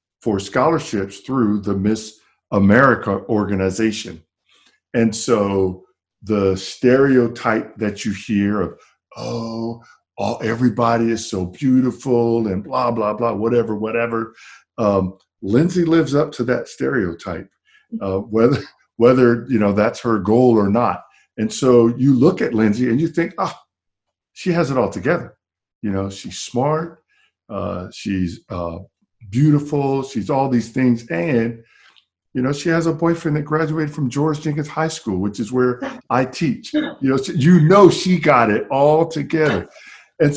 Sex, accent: male, American